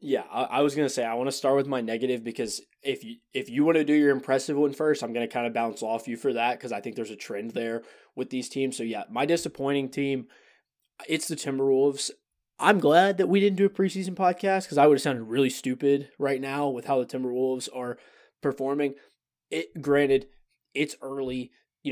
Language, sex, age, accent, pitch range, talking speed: English, male, 20-39, American, 120-145 Hz, 225 wpm